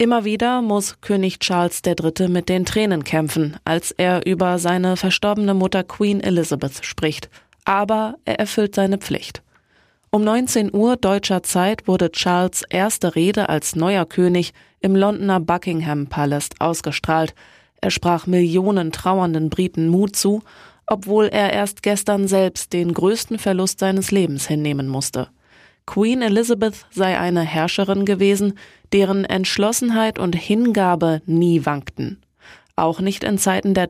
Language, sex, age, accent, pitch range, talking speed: German, female, 20-39, German, 165-205 Hz, 135 wpm